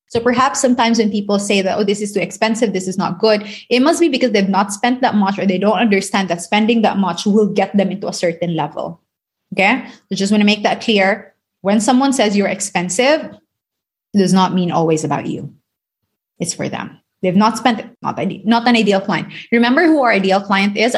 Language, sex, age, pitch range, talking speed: English, female, 20-39, 185-240 Hz, 215 wpm